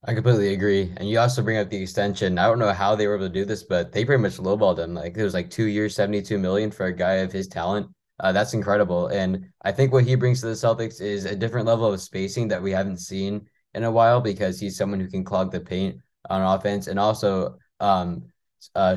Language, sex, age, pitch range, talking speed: English, male, 20-39, 95-110 Hz, 250 wpm